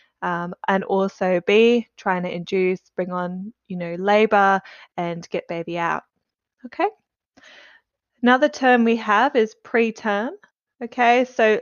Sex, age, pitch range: female, 20-39, 190-230 Hz